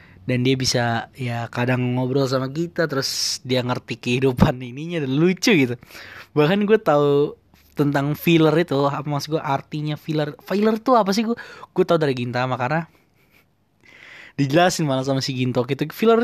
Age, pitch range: 20-39, 130-155 Hz